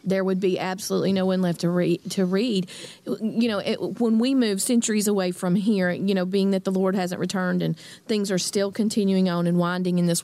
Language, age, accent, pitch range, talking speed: English, 40-59, American, 180-215 Hz, 225 wpm